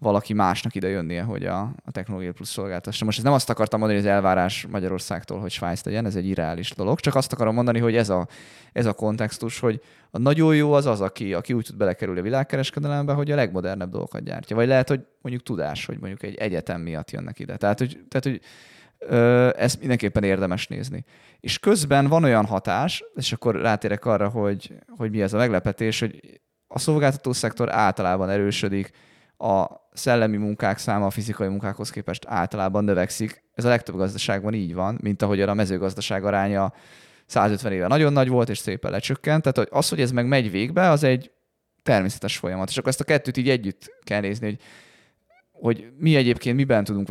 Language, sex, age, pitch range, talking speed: Hungarian, male, 20-39, 100-130 Hz, 190 wpm